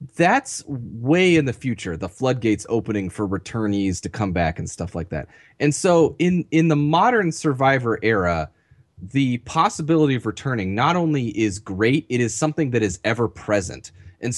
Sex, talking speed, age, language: male, 165 wpm, 30-49, English